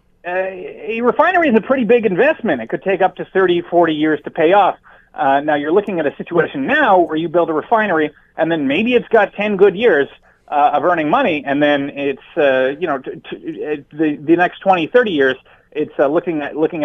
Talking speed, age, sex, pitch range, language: 230 wpm, 30-49, male, 155-220 Hz, English